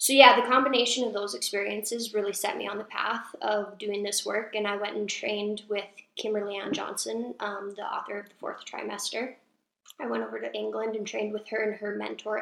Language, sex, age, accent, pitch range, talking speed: English, female, 10-29, American, 205-220 Hz, 215 wpm